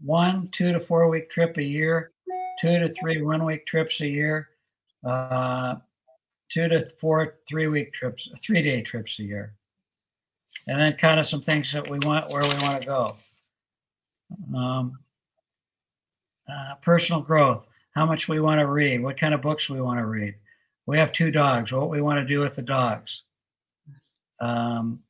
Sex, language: male, English